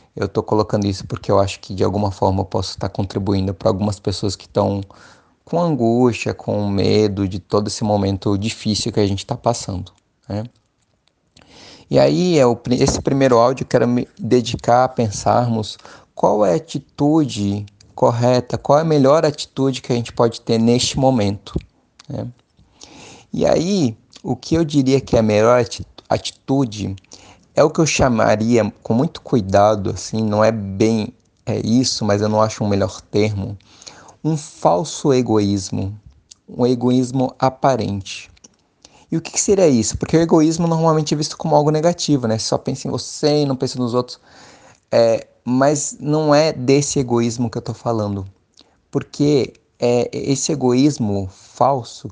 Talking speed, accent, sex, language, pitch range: 165 wpm, Brazilian, male, Portuguese, 105-135 Hz